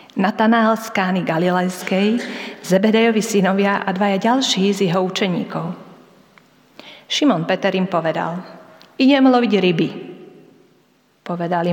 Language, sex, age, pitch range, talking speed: Slovak, female, 30-49, 175-225 Hz, 100 wpm